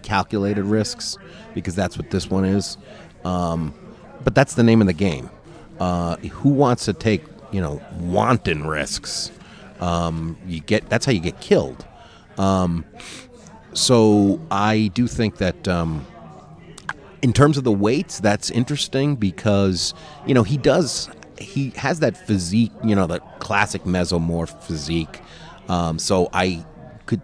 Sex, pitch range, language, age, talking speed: male, 90-110 Hz, English, 30-49, 145 wpm